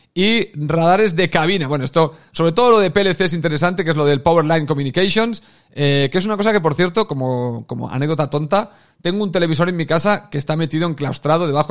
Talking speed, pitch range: 215 wpm, 150-180 Hz